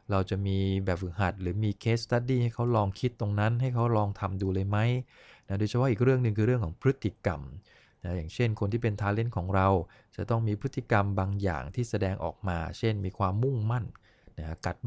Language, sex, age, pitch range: English, male, 20-39, 95-120 Hz